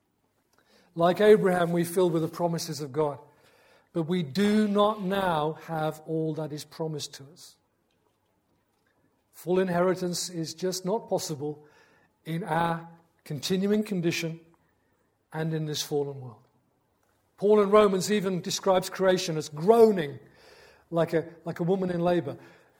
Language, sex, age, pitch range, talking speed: English, male, 40-59, 150-185 Hz, 135 wpm